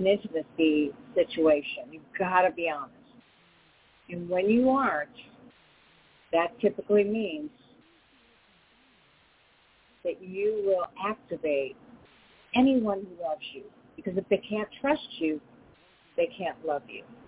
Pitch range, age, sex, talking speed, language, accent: 195-275 Hz, 50-69, female, 110 wpm, English, American